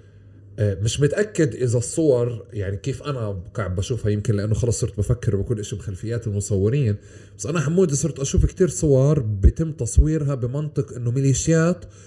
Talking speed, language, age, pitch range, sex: 150 wpm, Arabic, 30-49, 105-140 Hz, male